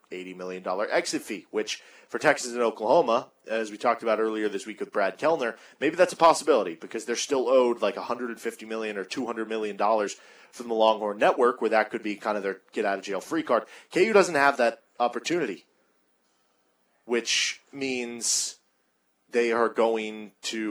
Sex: male